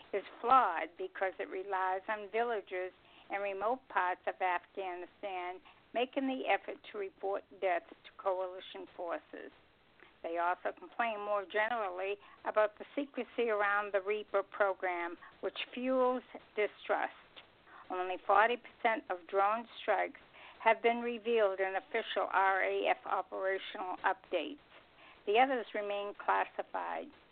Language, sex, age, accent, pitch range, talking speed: English, female, 60-79, American, 190-230 Hz, 115 wpm